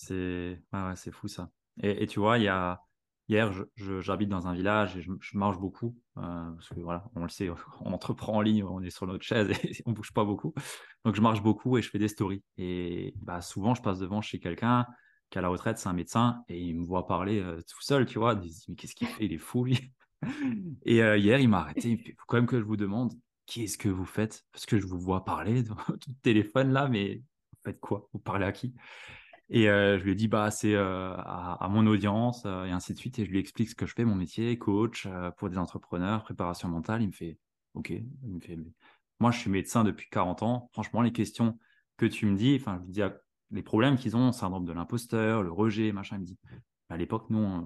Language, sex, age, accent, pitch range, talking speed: French, male, 20-39, French, 95-115 Hz, 260 wpm